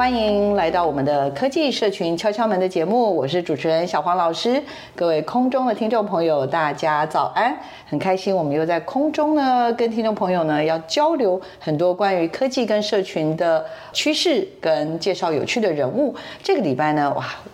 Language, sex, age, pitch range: Chinese, female, 50-69, 150-215 Hz